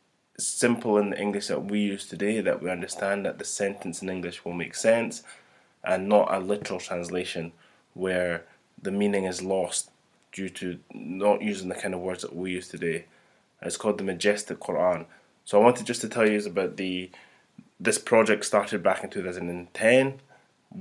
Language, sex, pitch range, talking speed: English, male, 90-100 Hz, 175 wpm